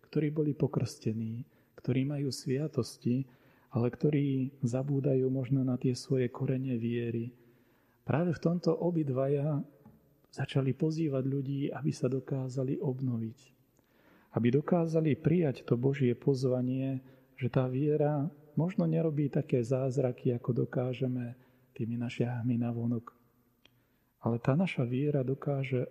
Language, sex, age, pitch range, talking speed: Slovak, male, 40-59, 120-140 Hz, 115 wpm